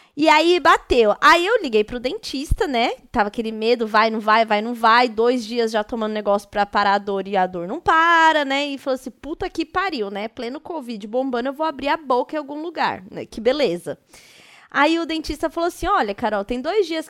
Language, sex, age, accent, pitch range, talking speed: Portuguese, female, 20-39, Brazilian, 225-305 Hz, 225 wpm